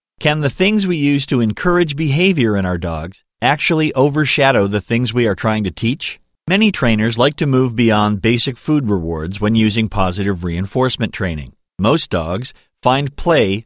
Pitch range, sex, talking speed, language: 95-130 Hz, male, 165 wpm, English